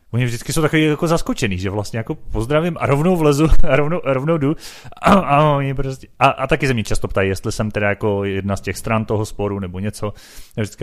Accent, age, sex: native, 30-49, male